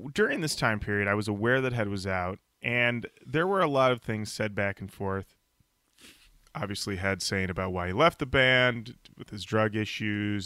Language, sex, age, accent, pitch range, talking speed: English, male, 30-49, American, 100-125 Hz, 200 wpm